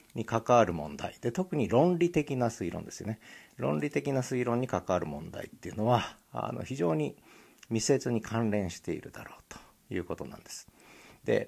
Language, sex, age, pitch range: Japanese, male, 50-69, 105-175 Hz